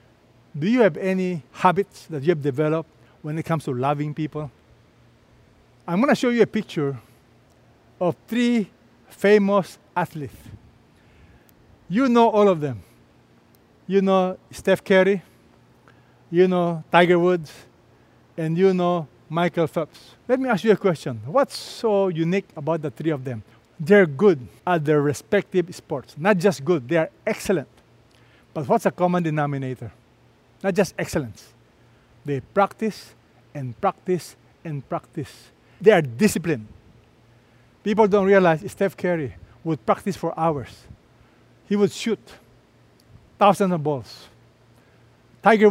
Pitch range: 130-200 Hz